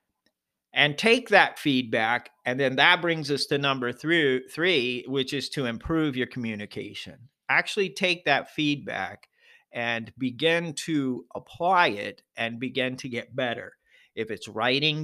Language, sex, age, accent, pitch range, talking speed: English, male, 50-69, American, 120-145 Hz, 140 wpm